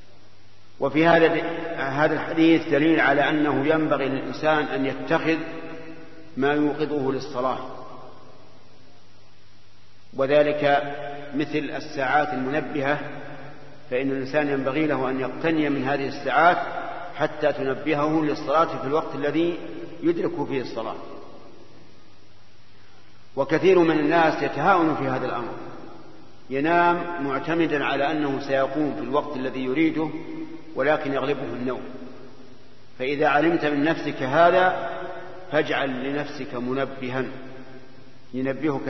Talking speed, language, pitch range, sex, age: 95 wpm, Arabic, 130-155 Hz, male, 50-69